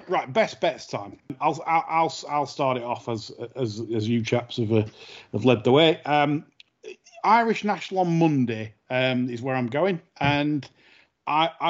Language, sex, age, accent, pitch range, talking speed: English, male, 30-49, British, 125-165 Hz, 170 wpm